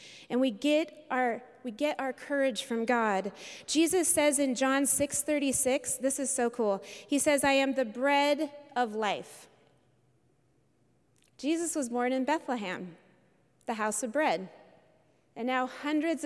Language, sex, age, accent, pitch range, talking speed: English, female, 30-49, American, 225-280 Hz, 145 wpm